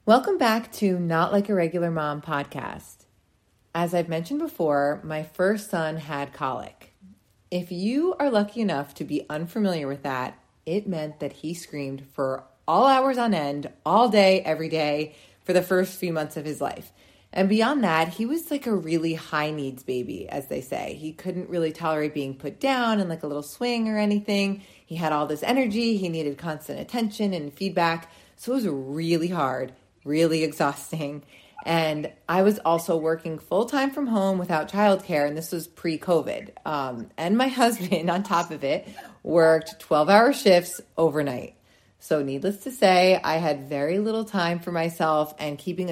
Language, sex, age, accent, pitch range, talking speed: English, female, 30-49, American, 150-195 Hz, 175 wpm